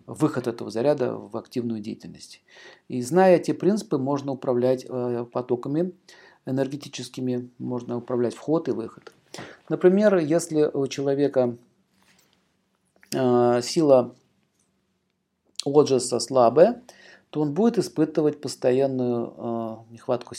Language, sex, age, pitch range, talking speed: Russian, male, 50-69, 125-165 Hz, 105 wpm